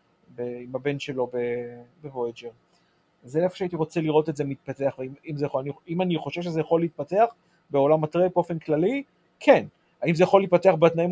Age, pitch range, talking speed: 30-49, 140-180 Hz, 190 wpm